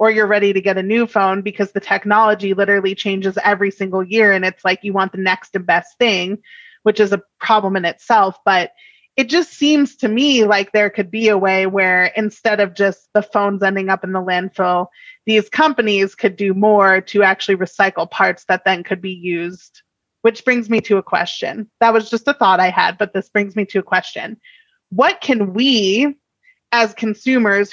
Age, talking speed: 30-49, 205 wpm